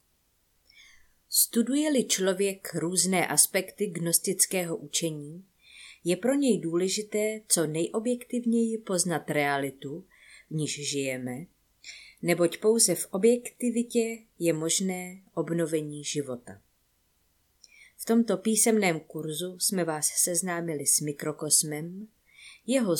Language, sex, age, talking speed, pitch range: Czech, female, 30-49, 90 wpm, 155-215 Hz